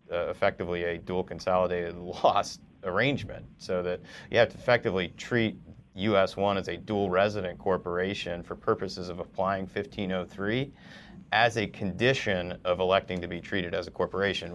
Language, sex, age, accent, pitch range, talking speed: English, male, 40-59, American, 90-105 Hz, 155 wpm